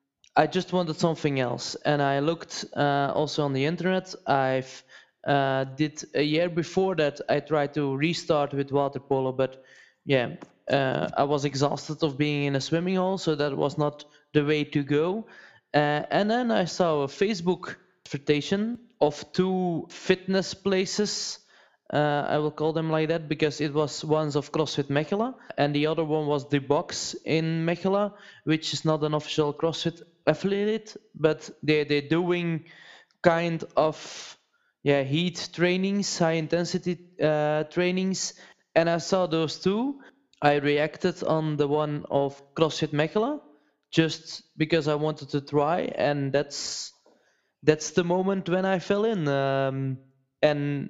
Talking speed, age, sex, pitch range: 155 wpm, 20-39, male, 145-175 Hz